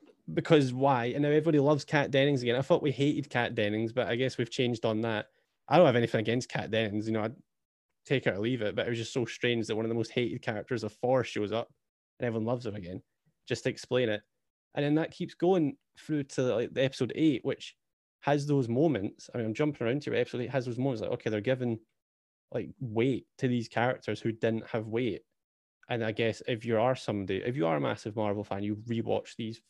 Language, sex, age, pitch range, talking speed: English, male, 10-29, 110-130 Hz, 240 wpm